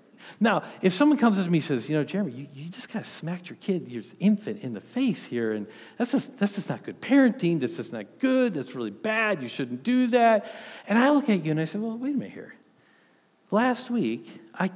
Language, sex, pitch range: English, male, 155-230 Hz